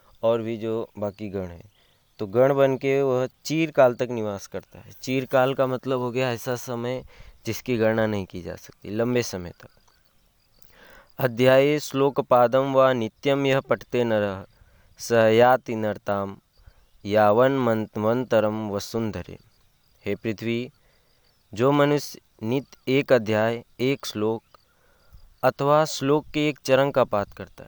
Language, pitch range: Hindi, 105-130 Hz